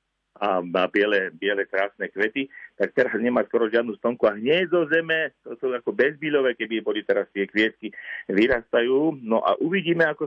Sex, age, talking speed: male, 50-69, 170 wpm